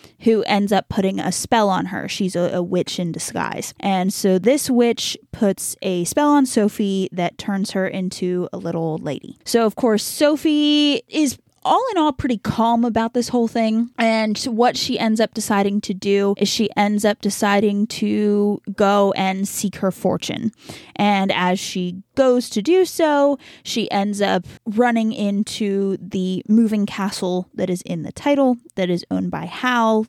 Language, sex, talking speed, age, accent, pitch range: English, female, 175 wpm, 20-39, American, 190-240 Hz